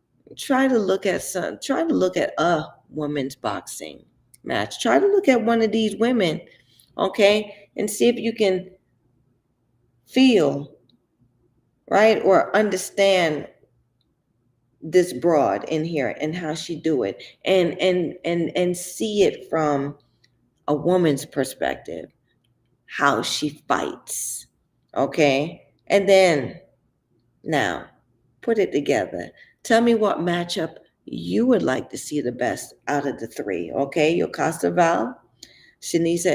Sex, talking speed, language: female, 130 wpm, English